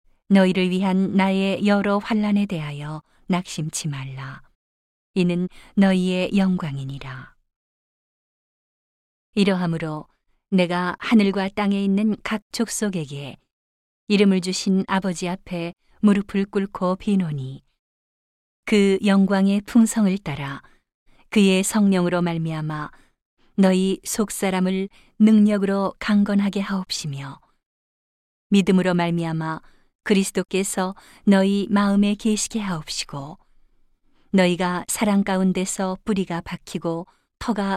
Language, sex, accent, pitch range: Korean, female, native, 175-200 Hz